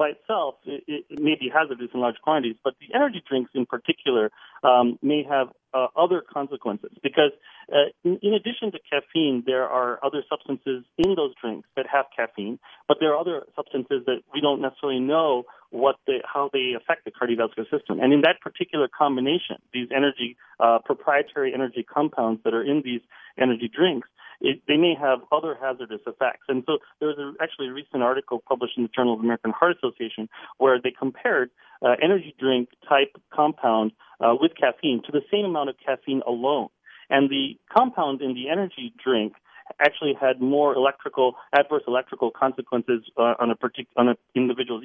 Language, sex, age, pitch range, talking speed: English, male, 40-59, 120-150 Hz, 180 wpm